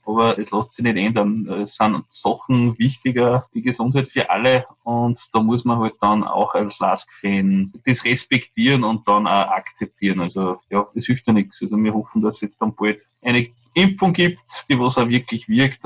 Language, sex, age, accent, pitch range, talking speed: German, male, 20-39, Austrian, 105-125 Hz, 195 wpm